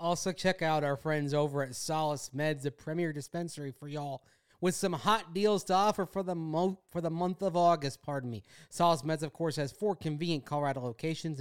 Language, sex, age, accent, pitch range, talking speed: English, male, 30-49, American, 140-185 Hz, 195 wpm